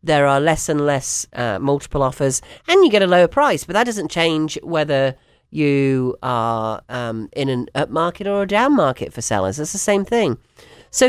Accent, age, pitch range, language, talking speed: British, 40-59, 145-235 Hz, English, 200 wpm